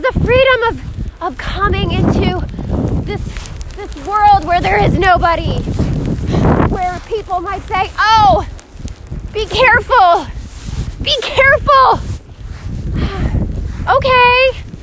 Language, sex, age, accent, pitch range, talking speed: English, female, 30-49, American, 265-400 Hz, 95 wpm